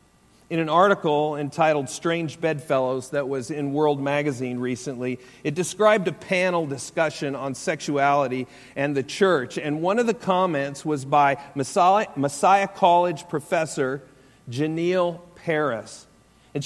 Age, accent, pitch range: 40-59, American, 140-190 Hz